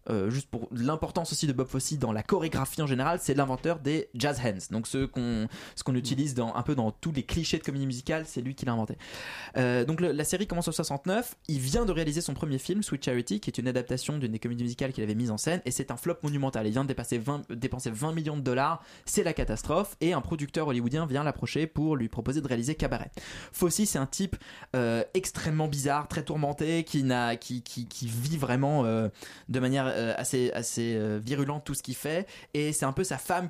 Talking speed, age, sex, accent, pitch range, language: 235 wpm, 20-39, male, French, 125-155 Hz, French